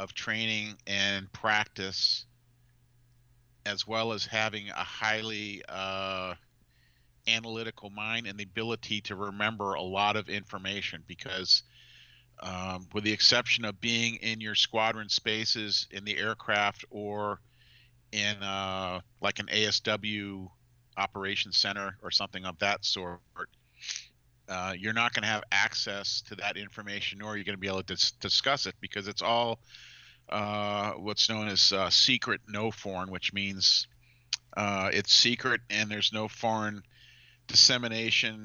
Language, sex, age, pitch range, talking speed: English, male, 40-59, 100-115 Hz, 135 wpm